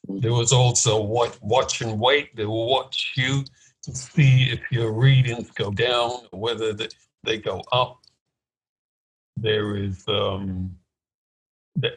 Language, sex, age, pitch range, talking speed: English, male, 60-79, 115-135 Hz, 130 wpm